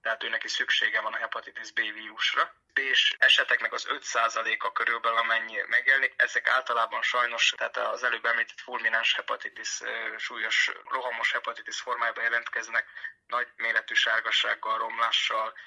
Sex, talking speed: male, 125 wpm